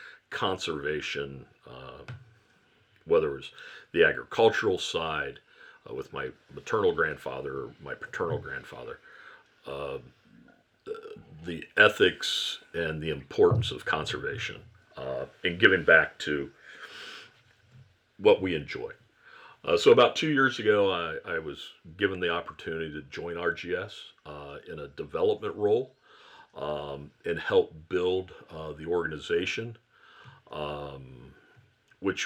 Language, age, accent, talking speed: English, 50-69, American, 115 wpm